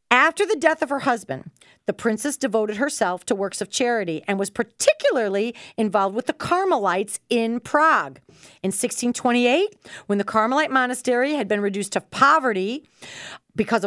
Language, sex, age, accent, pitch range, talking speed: English, female, 40-59, American, 190-260 Hz, 150 wpm